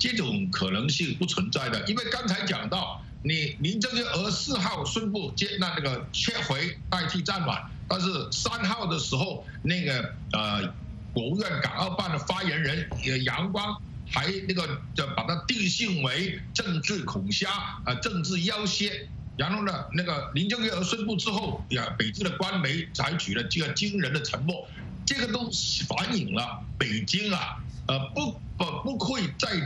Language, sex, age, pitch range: English, male, 60-79, 140-200 Hz